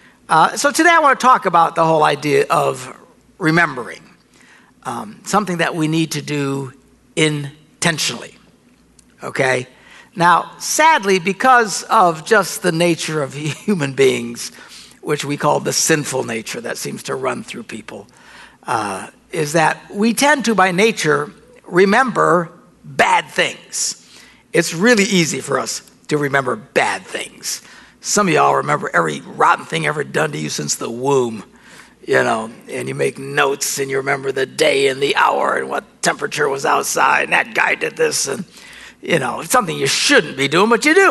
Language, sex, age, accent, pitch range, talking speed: English, male, 60-79, American, 150-230 Hz, 165 wpm